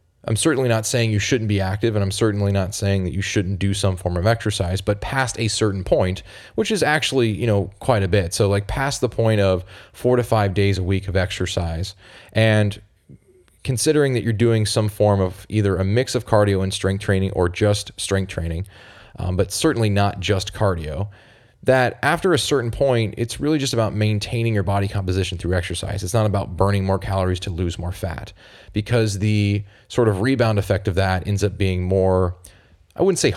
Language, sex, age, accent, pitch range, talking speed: English, male, 30-49, American, 95-110 Hz, 205 wpm